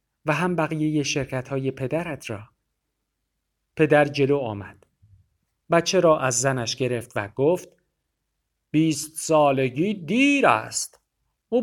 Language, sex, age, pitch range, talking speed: Persian, male, 50-69, 120-170 Hz, 120 wpm